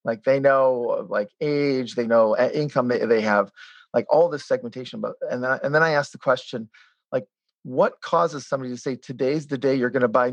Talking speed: 215 wpm